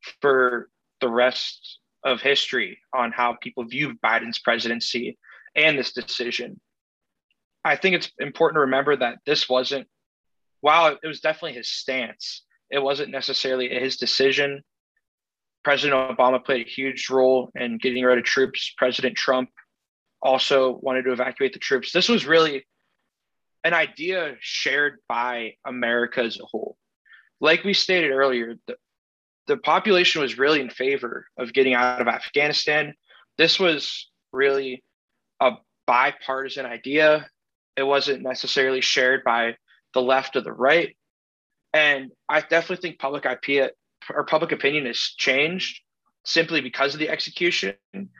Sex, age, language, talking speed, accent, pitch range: male, 20-39, English, 140 wpm, American, 125-155 Hz